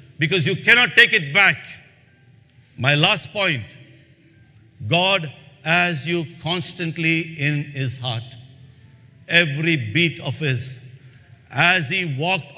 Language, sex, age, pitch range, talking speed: English, male, 60-79, 125-165 Hz, 110 wpm